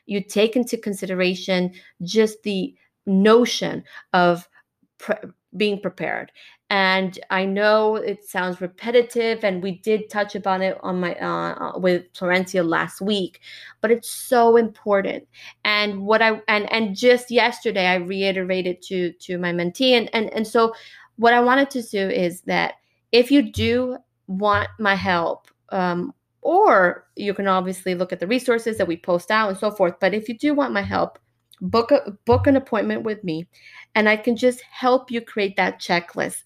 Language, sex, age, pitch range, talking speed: English, female, 20-39, 185-230 Hz, 170 wpm